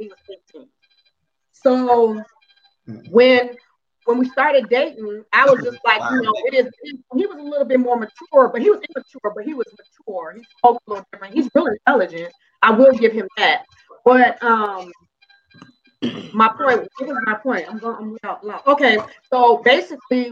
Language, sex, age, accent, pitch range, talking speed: English, female, 30-49, American, 205-260 Hz, 175 wpm